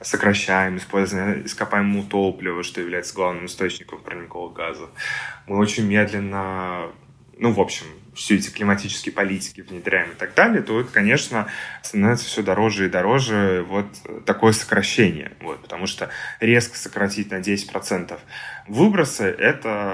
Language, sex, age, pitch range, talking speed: Russian, male, 20-39, 95-115 Hz, 130 wpm